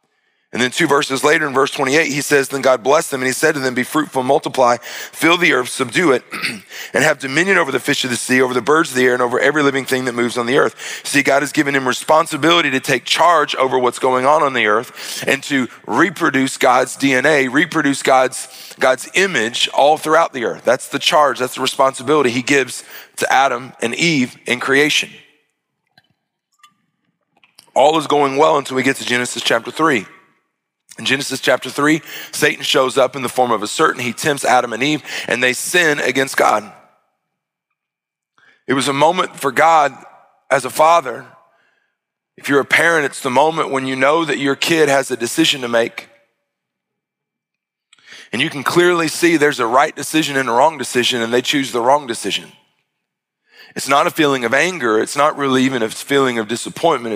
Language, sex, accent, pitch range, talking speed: English, male, American, 125-150 Hz, 200 wpm